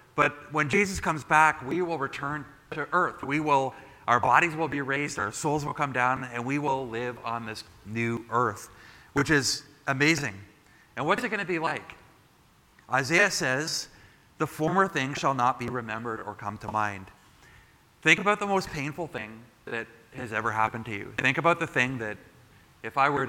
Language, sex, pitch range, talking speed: English, male, 115-150 Hz, 190 wpm